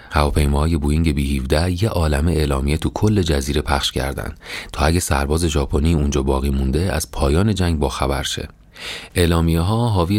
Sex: male